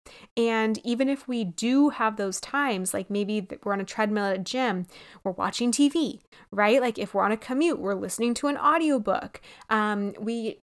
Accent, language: American, English